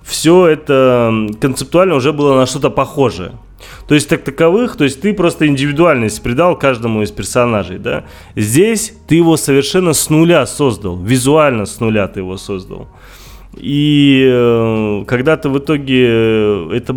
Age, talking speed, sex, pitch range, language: 20-39, 140 wpm, male, 100-130 Hz, Russian